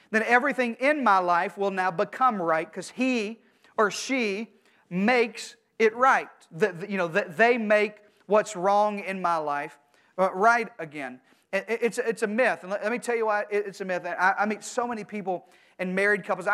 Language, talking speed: English, 195 wpm